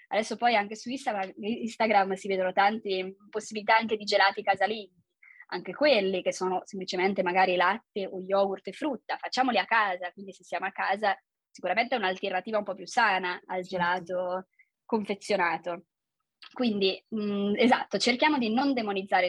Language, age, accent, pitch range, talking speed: Italian, 20-39, native, 190-235 Hz, 150 wpm